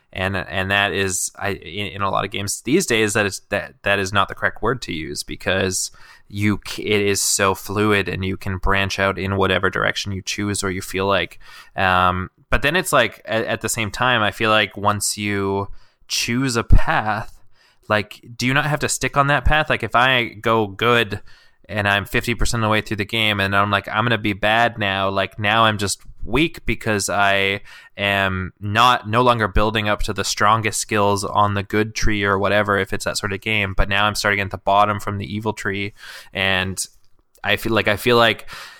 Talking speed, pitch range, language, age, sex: 215 wpm, 100-110 Hz, English, 20-39, male